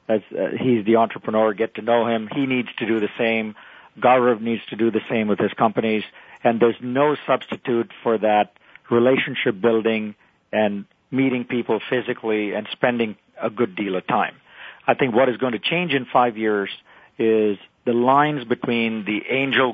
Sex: male